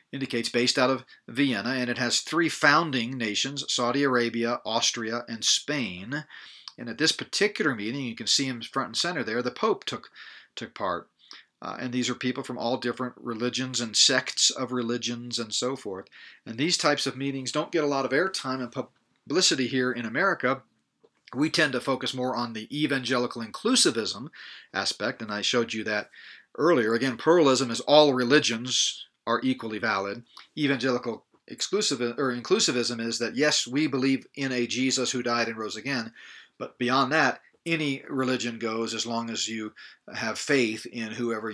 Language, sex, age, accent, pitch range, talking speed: English, male, 40-59, American, 115-135 Hz, 175 wpm